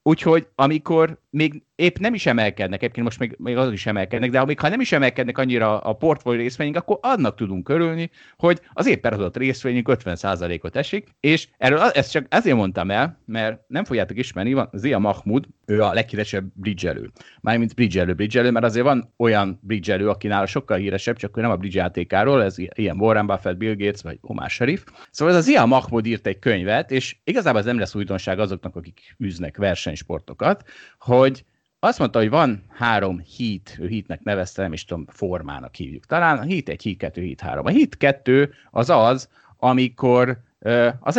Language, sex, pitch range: Hungarian, male, 100-130 Hz